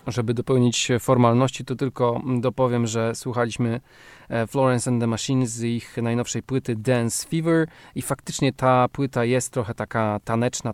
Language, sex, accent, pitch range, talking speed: Polish, male, native, 115-130 Hz, 145 wpm